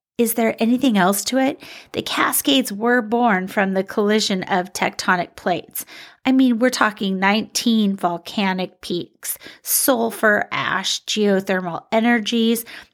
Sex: female